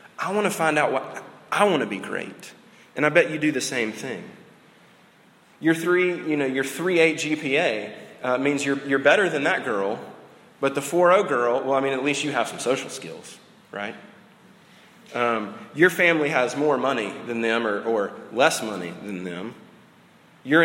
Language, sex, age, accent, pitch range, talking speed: English, male, 30-49, American, 120-155 Hz, 190 wpm